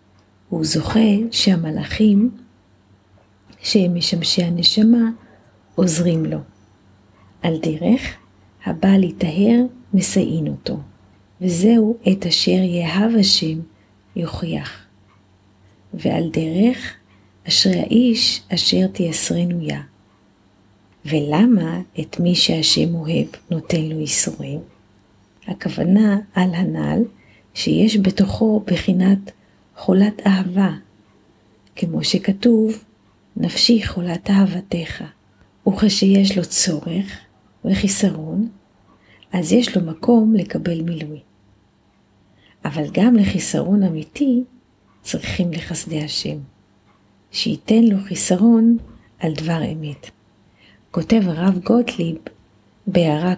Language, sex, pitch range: Hebrew, female, 155-200 Hz